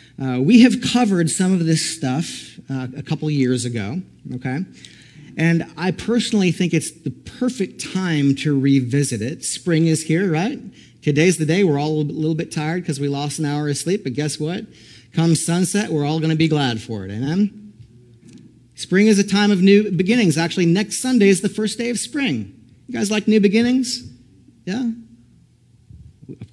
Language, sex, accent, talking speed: English, male, American, 185 wpm